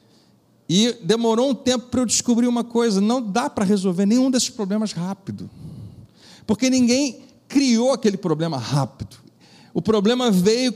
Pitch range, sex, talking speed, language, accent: 175-245 Hz, male, 145 wpm, Portuguese, Brazilian